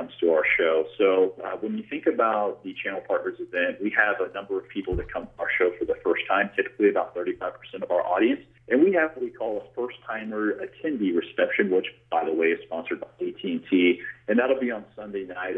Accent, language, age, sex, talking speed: American, English, 40-59, male, 225 wpm